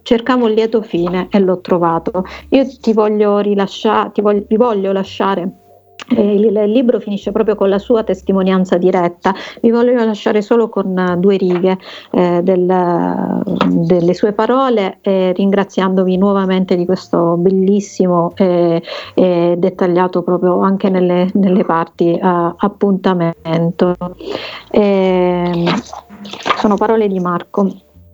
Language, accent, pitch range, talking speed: Italian, native, 185-220 Hz, 125 wpm